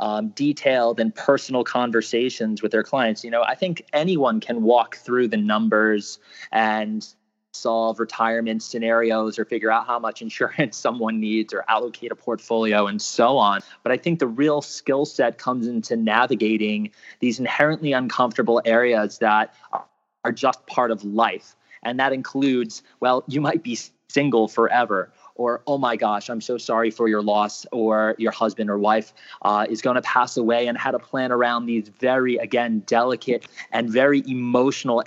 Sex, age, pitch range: male, 20-39, 110-130 Hz